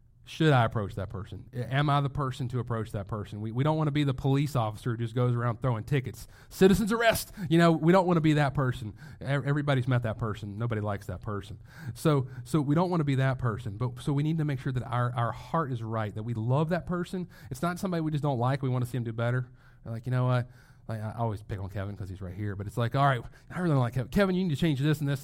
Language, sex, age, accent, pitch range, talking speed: English, male, 30-49, American, 115-145 Hz, 290 wpm